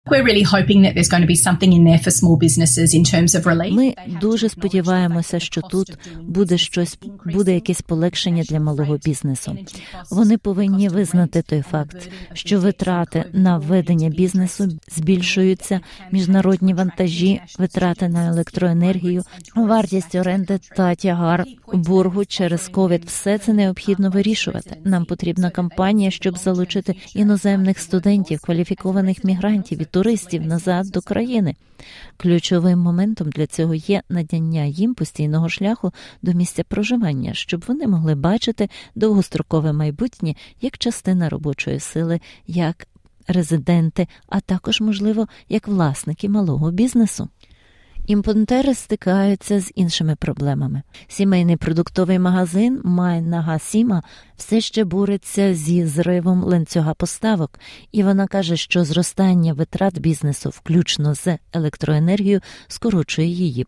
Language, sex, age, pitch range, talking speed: Ukrainian, female, 30-49, 165-200 Hz, 105 wpm